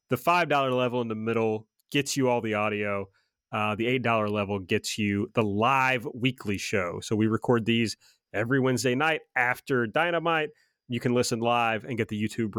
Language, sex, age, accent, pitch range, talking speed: English, male, 30-49, American, 110-130 Hz, 180 wpm